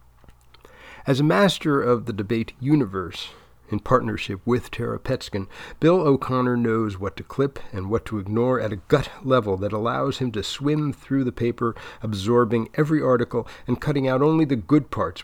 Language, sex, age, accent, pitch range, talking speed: English, male, 40-59, American, 110-130 Hz, 175 wpm